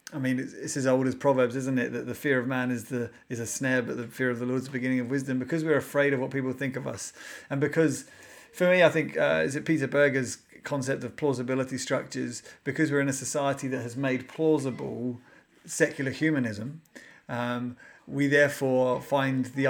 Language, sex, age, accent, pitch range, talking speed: English, male, 30-49, British, 125-145 Hz, 205 wpm